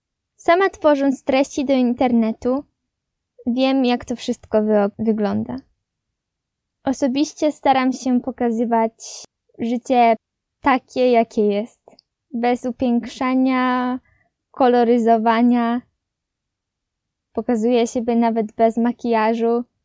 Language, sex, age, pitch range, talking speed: Polish, female, 20-39, 230-260 Hz, 80 wpm